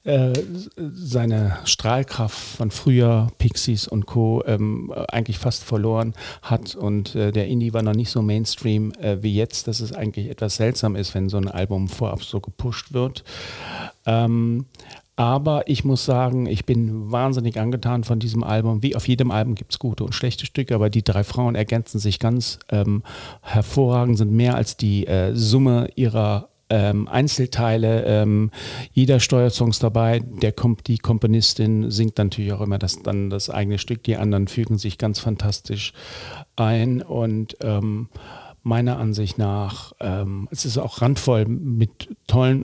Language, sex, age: German, male, 40-59